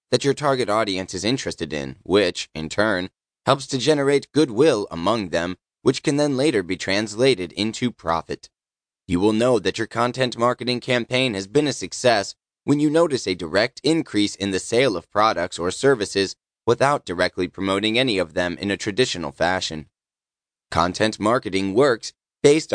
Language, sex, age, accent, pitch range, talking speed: English, male, 20-39, American, 95-130 Hz, 165 wpm